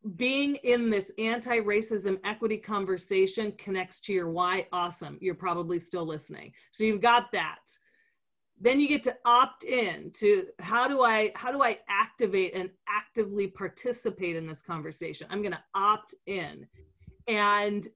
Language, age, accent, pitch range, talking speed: English, 30-49, American, 185-235 Hz, 145 wpm